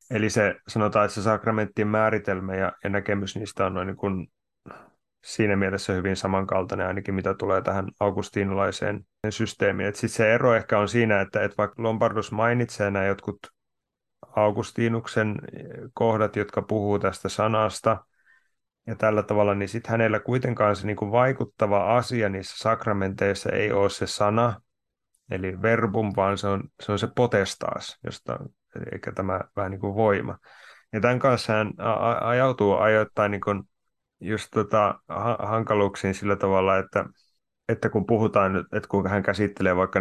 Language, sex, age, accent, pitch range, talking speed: Finnish, male, 30-49, native, 95-110 Hz, 145 wpm